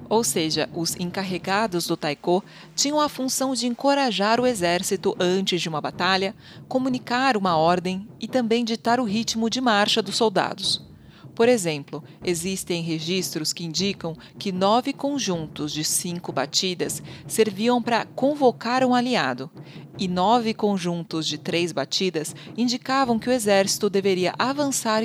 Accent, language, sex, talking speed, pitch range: Brazilian, Portuguese, female, 140 wpm, 175-235 Hz